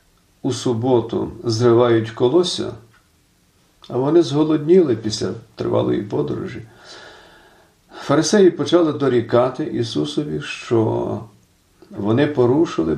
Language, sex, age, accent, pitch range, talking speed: Ukrainian, male, 50-69, native, 115-145 Hz, 80 wpm